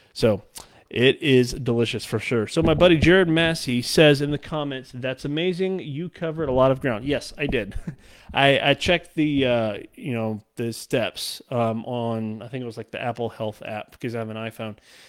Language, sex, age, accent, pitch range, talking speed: English, male, 30-49, American, 115-145 Hz, 205 wpm